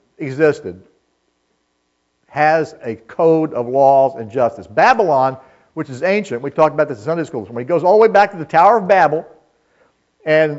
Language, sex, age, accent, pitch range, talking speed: English, male, 50-69, American, 140-200 Hz, 180 wpm